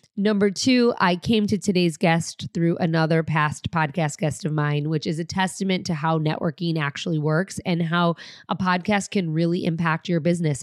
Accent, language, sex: American, English, female